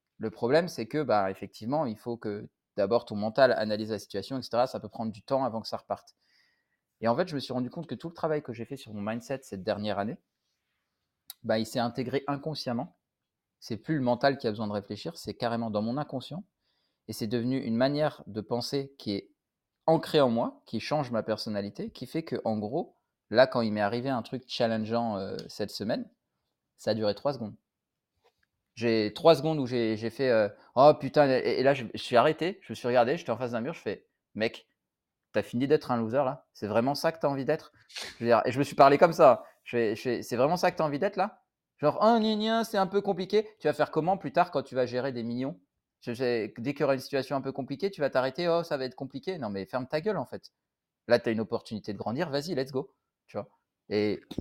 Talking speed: 245 wpm